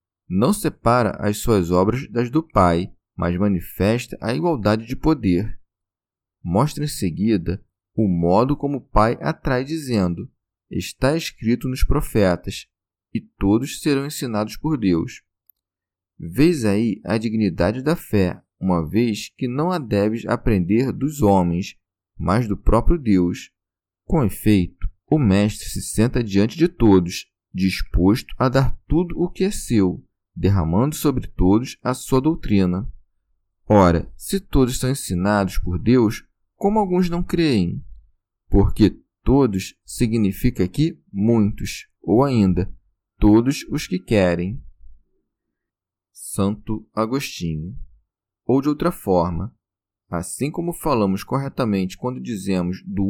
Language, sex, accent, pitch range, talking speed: Portuguese, male, Brazilian, 95-130 Hz, 125 wpm